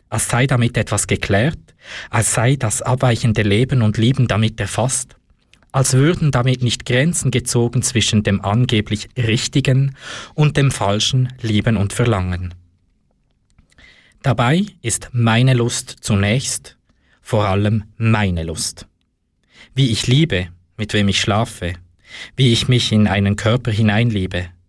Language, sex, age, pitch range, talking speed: German, male, 20-39, 100-125 Hz, 130 wpm